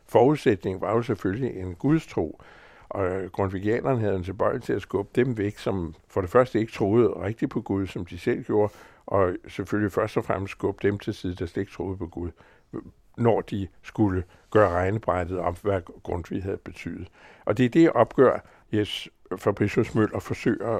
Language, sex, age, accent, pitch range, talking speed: Danish, male, 60-79, American, 90-110 Hz, 190 wpm